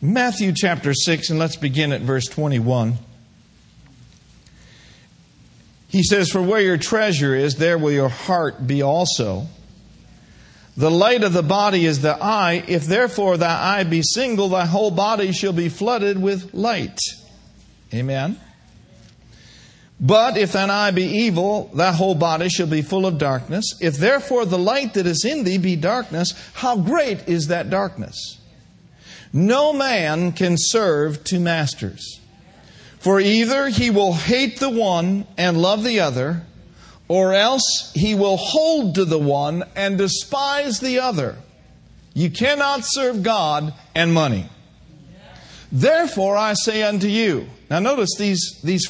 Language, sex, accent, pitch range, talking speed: English, male, American, 160-210 Hz, 145 wpm